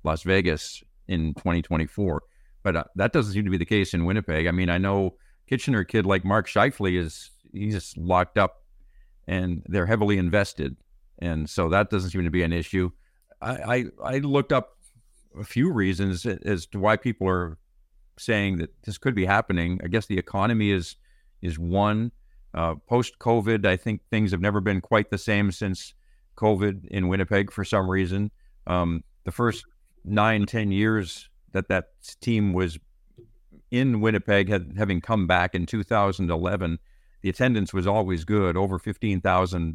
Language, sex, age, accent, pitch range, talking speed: English, male, 50-69, American, 90-105 Hz, 170 wpm